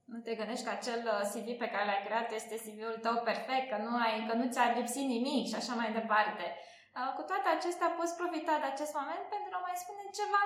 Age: 20-39